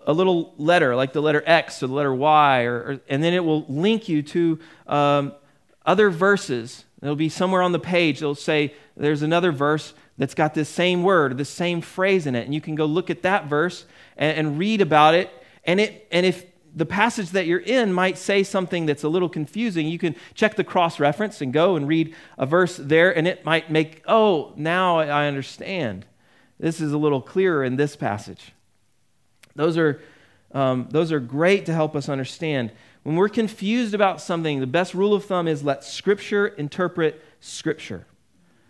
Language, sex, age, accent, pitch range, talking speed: English, male, 40-59, American, 145-185 Hz, 195 wpm